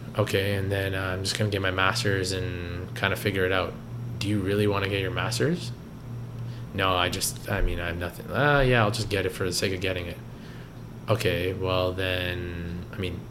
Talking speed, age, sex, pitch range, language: 220 wpm, 20-39, male, 95-120 Hz, English